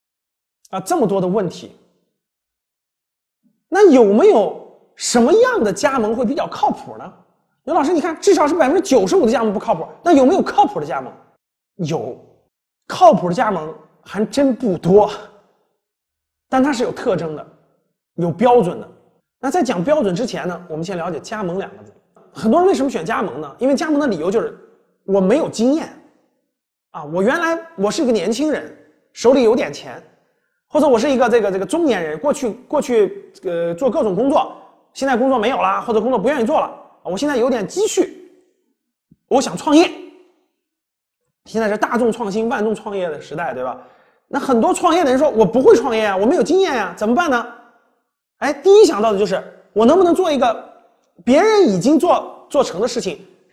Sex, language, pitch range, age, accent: male, Chinese, 220-330 Hz, 30-49, native